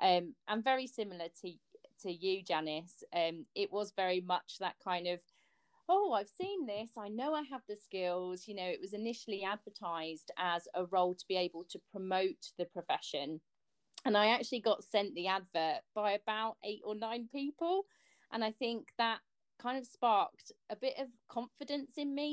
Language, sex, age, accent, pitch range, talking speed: English, female, 30-49, British, 180-245 Hz, 185 wpm